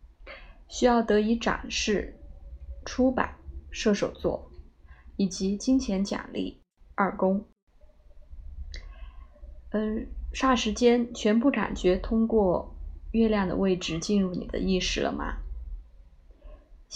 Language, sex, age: Chinese, female, 20-39